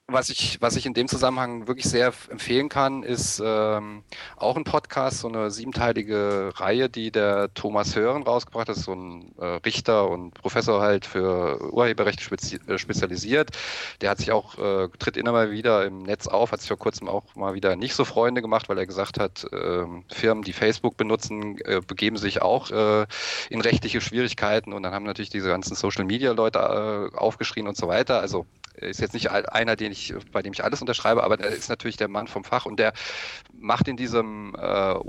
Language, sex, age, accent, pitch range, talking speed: German, male, 40-59, German, 100-120 Hz, 200 wpm